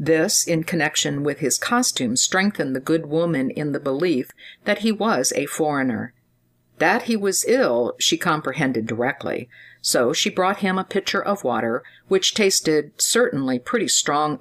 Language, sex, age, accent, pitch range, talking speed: English, female, 50-69, American, 120-175 Hz, 160 wpm